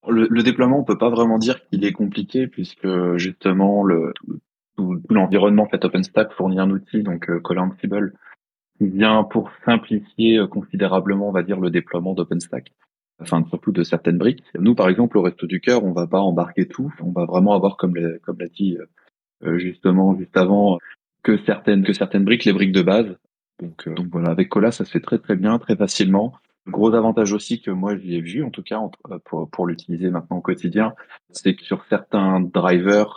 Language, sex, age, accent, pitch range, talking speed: French, male, 20-39, French, 90-105 Hz, 210 wpm